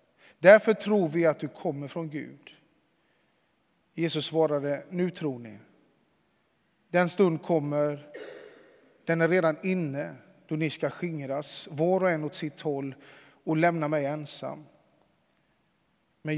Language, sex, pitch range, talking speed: Swedish, male, 145-175 Hz, 125 wpm